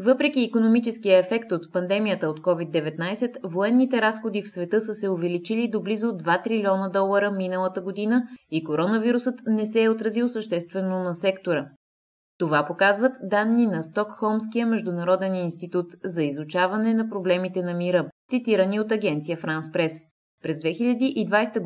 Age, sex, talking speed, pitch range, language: 20-39, female, 140 wpm, 170-220 Hz, Bulgarian